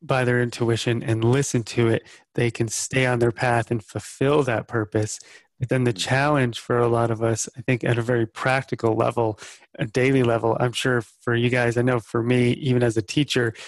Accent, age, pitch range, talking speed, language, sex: American, 30-49, 115-130 Hz, 215 wpm, English, male